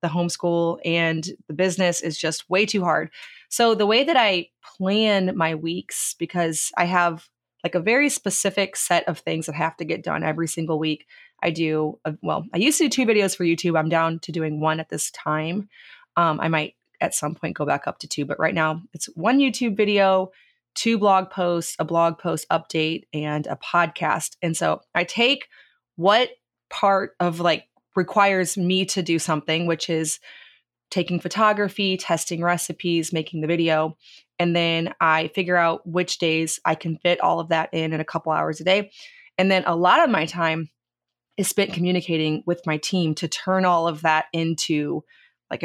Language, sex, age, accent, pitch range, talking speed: English, female, 20-39, American, 160-190 Hz, 190 wpm